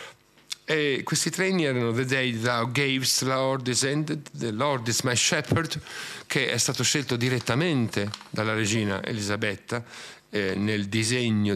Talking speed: 140 wpm